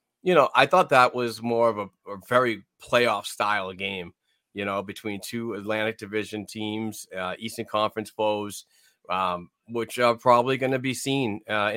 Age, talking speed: 30-49, 170 wpm